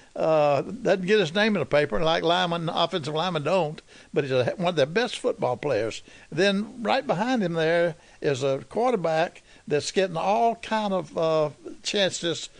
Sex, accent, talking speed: male, American, 175 wpm